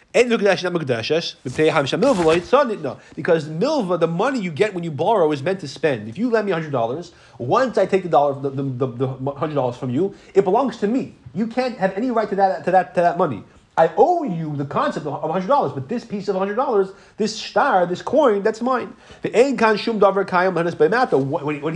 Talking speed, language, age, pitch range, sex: 190 wpm, English, 30-49, 150-210 Hz, male